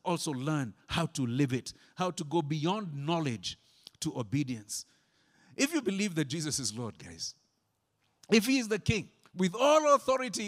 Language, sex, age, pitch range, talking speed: English, male, 50-69, 120-170 Hz, 165 wpm